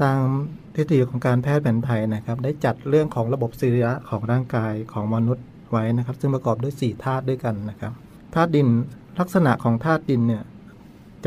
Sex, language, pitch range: male, Thai, 120-145 Hz